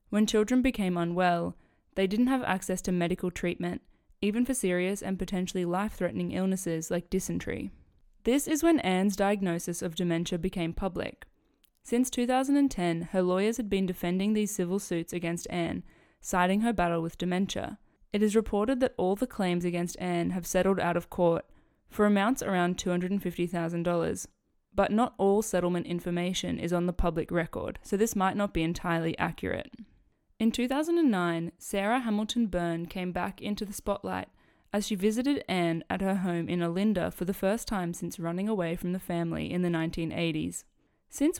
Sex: female